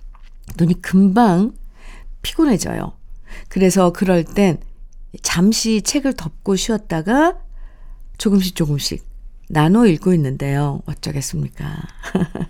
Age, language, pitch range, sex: 50-69, Korean, 170-235 Hz, female